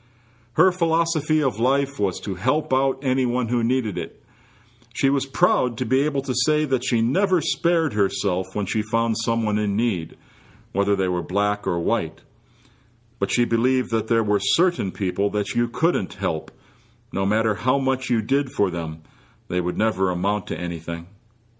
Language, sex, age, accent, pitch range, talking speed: English, male, 50-69, American, 105-135 Hz, 175 wpm